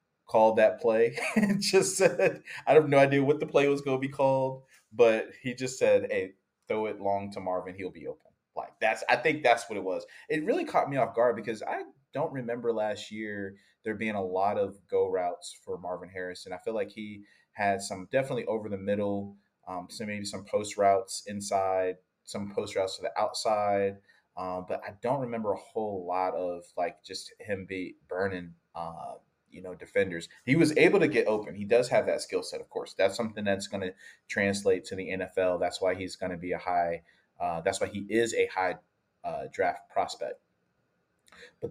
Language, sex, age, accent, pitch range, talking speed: English, male, 20-39, American, 95-130 Hz, 205 wpm